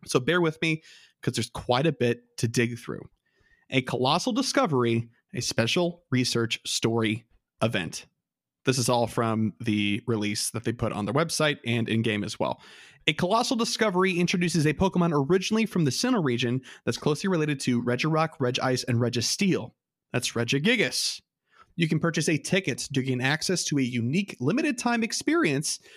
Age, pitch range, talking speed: 30-49, 120-180 Hz, 165 wpm